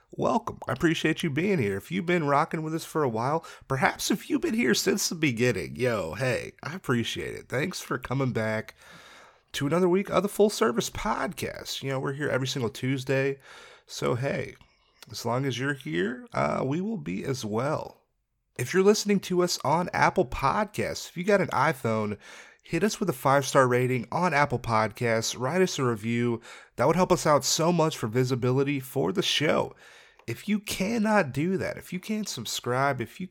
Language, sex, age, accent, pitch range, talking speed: English, male, 30-49, American, 130-185 Hz, 200 wpm